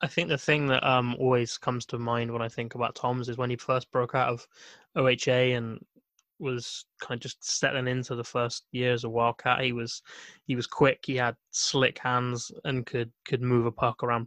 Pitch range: 120-130 Hz